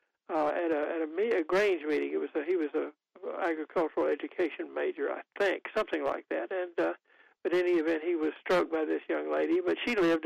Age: 60-79